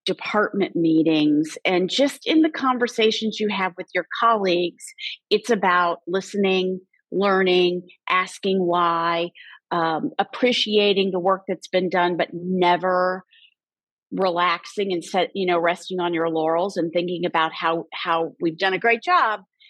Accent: American